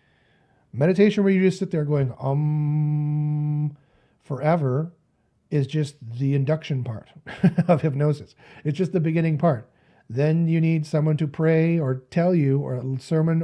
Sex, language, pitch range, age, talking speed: male, English, 135-160 Hz, 40-59, 145 wpm